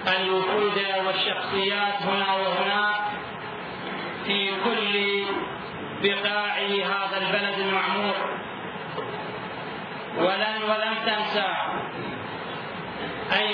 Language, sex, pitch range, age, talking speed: Arabic, male, 195-210 Hz, 40-59, 60 wpm